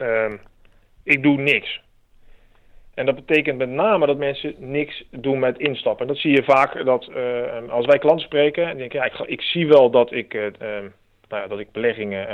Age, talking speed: 40-59, 200 wpm